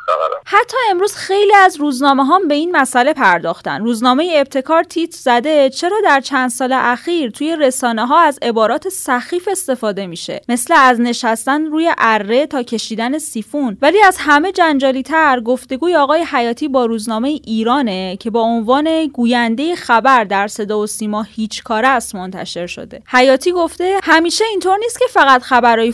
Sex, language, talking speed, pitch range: female, Persian, 160 wpm, 225-310 Hz